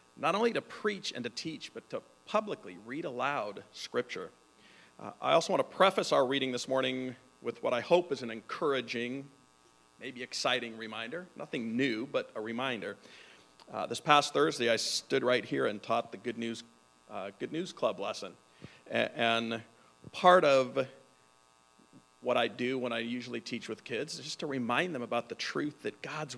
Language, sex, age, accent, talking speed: English, male, 40-59, American, 175 wpm